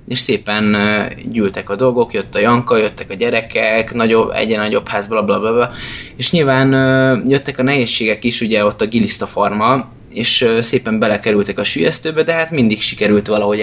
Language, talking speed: Hungarian, 160 wpm